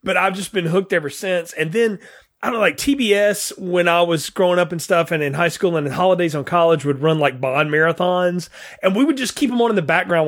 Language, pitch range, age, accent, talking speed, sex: English, 160-205 Hz, 30-49, American, 265 wpm, male